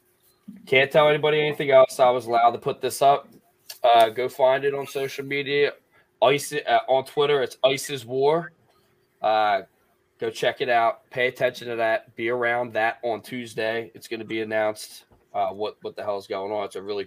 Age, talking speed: 20-39, 200 wpm